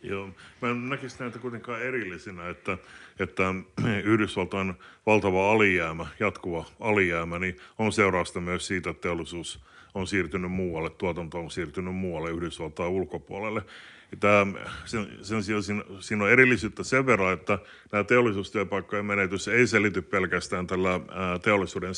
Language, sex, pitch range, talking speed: Finnish, male, 90-105 Hz, 130 wpm